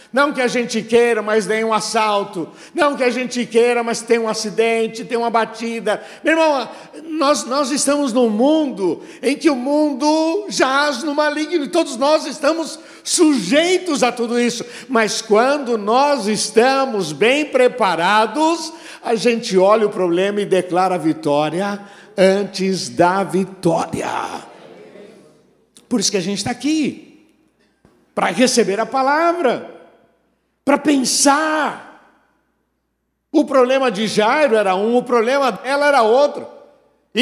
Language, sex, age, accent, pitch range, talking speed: Portuguese, male, 60-79, Brazilian, 230-290 Hz, 140 wpm